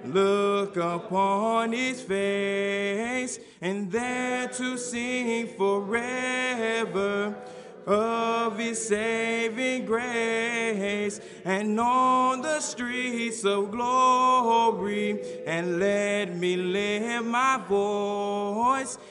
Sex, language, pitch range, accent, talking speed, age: male, English, 200-235 Hz, American, 80 wpm, 20-39